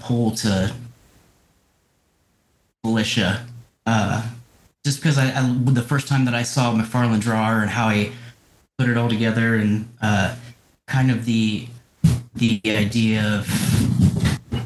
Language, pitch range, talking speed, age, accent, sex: English, 110-120 Hz, 130 wpm, 30-49, American, male